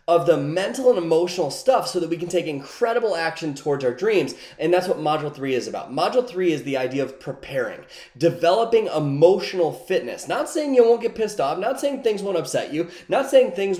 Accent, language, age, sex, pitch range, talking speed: American, English, 20-39, male, 150-215 Hz, 215 wpm